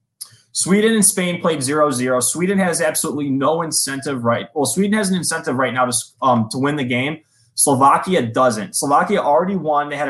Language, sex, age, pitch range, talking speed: English, male, 20-39, 125-155 Hz, 185 wpm